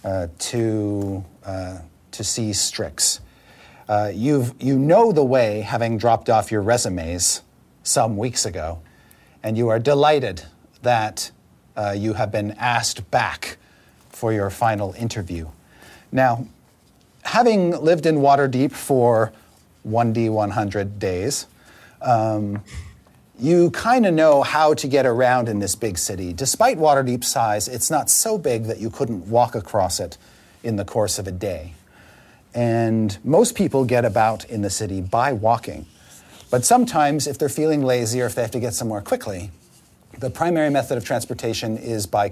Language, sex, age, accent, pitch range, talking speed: English, male, 40-59, American, 100-125 Hz, 150 wpm